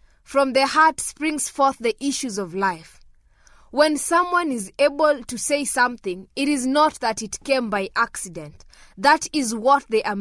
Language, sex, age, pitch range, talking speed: English, female, 20-39, 215-285 Hz, 170 wpm